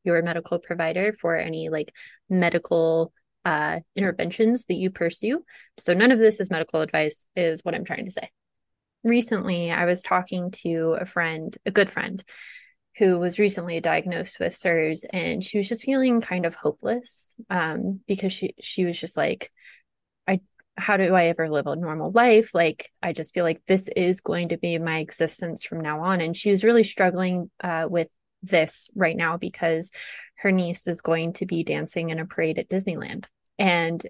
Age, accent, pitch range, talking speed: 20-39, American, 165-200 Hz, 185 wpm